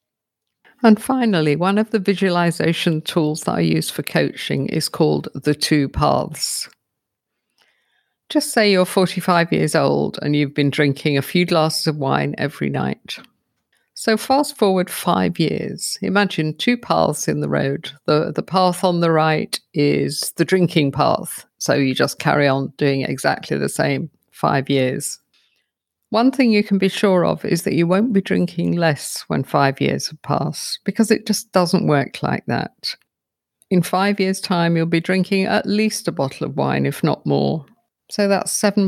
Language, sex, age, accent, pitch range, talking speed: English, female, 50-69, British, 145-195 Hz, 170 wpm